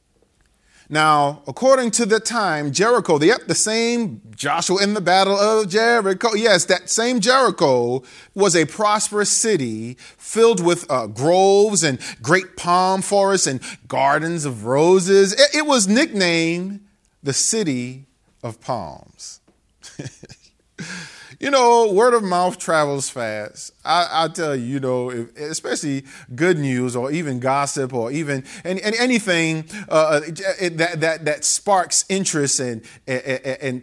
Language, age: English, 40-59